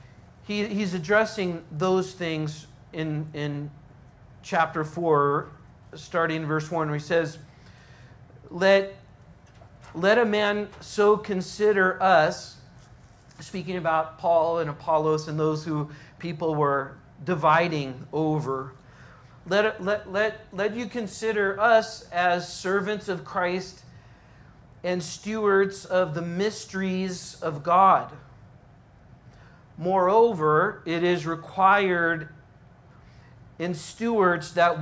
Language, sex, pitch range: English, male, 145-200 Hz